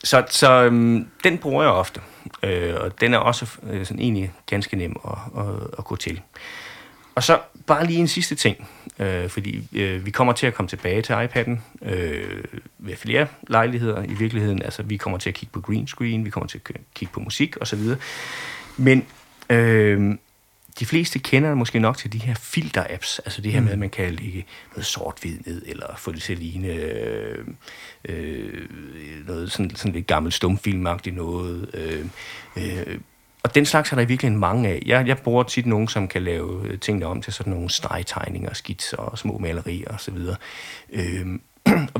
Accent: native